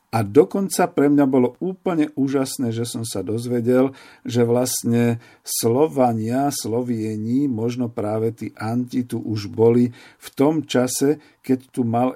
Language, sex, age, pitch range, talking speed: Slovak, male, 50-69, 110-130 Hz, 140 wpm